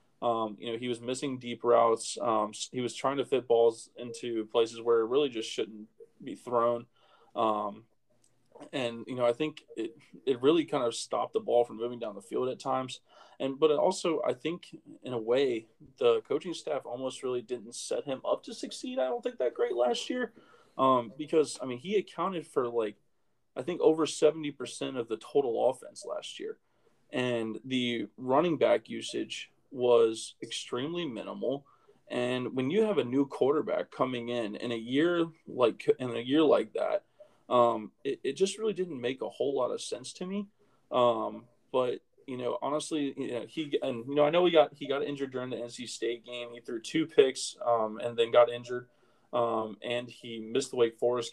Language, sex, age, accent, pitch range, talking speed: English, male, 20-39, American, 120-160 Hz, 200 wpm